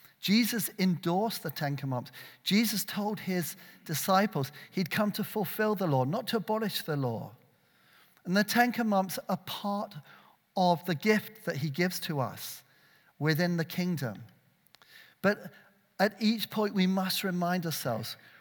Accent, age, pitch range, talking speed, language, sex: British, 40-59, 150-200 Hz, 145 wpm, English, male